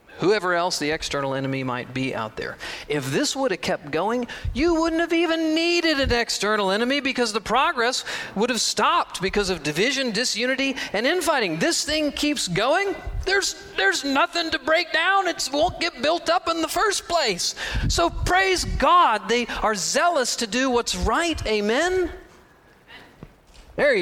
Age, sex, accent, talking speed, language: 40-59, male, American, 165 wpm, English